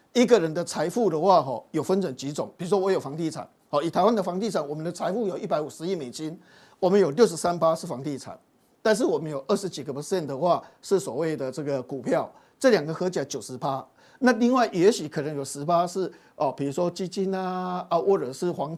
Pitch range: 150-205 Hz